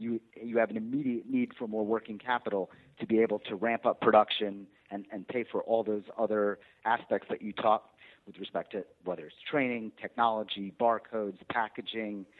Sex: male